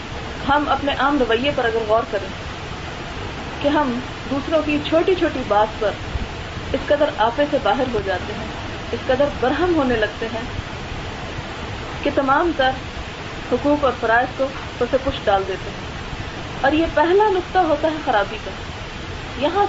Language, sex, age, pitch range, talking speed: Urdu, female, 30-49, 235-295 Hz, 155 wpm